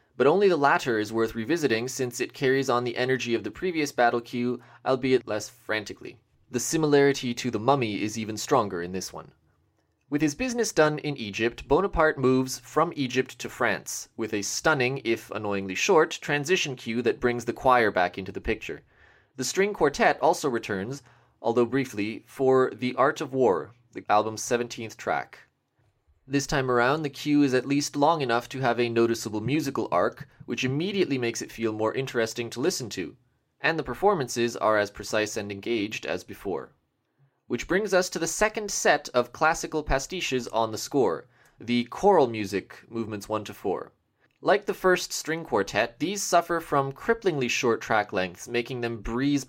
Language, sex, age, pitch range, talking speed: English, male, 20-39, 115-145 Hz, 180 wpm